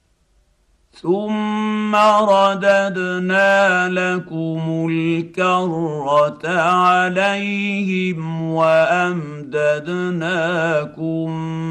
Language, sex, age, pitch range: Arabic, male, 50-69, 165-195 Hz